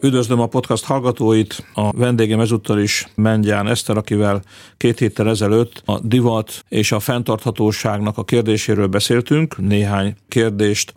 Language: Hungarian